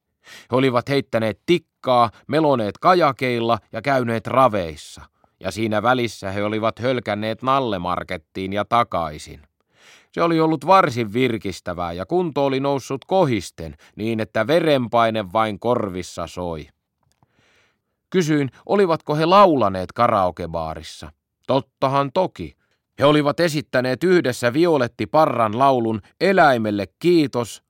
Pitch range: 105-150 Hz